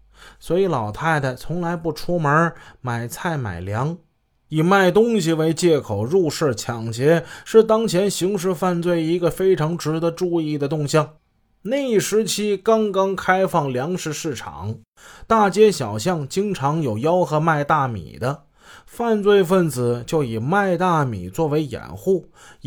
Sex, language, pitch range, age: male, Chinese, 140-185 Hz, 20-39